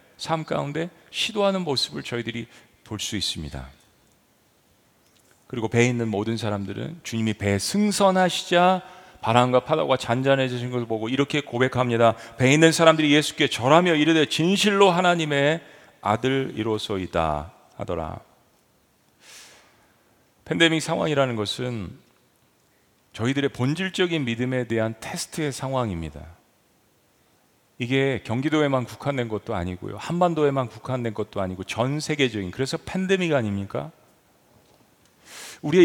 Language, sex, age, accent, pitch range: Korean, male, 40-59, native, 120-180 Hz